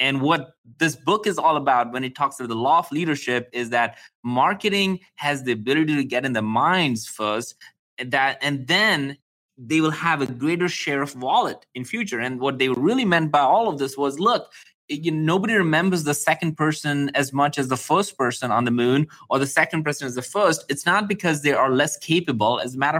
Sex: male